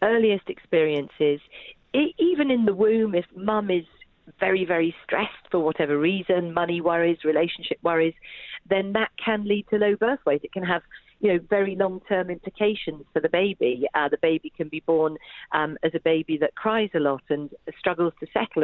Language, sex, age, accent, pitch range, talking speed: English, female, 40-59, British, 155-200 Hz, 180 wpm